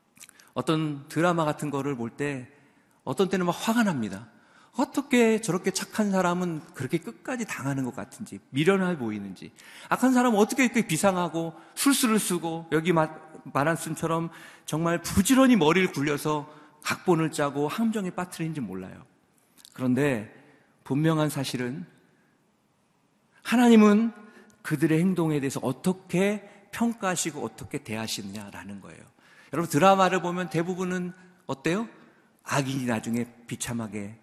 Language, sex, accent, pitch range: Korean, male, native, 145-220 Hz